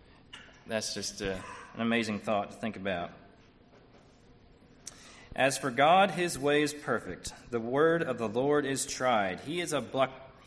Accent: American